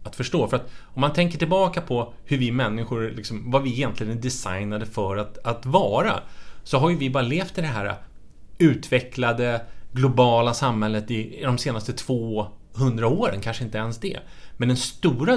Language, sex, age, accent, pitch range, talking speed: Swedish, male, 30-49, Norwegian, 110-155 Hz, 185 wpm